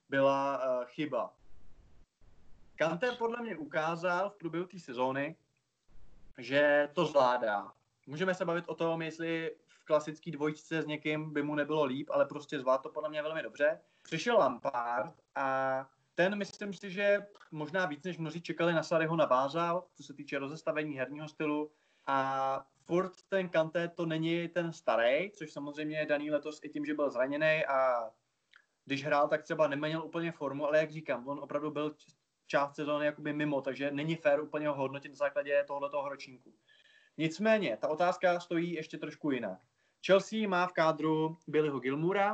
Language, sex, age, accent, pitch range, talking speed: Czech, male, 20-39, native, 145-170 Hz, 170 wpm